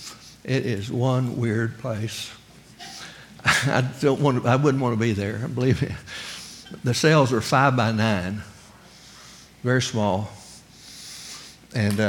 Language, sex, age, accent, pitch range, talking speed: English, male, 60-79, American, 115-145 Hz, 130 wpm